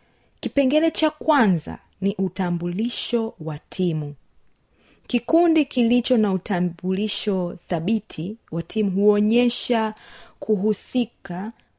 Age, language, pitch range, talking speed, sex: 30-49, Swahili, 180-245 Hz, 80 wpm, female